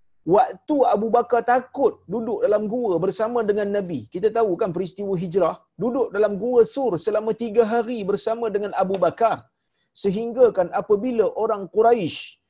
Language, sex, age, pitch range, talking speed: Malayalam, male, 40-59, 185-245 Hz, 150 wpm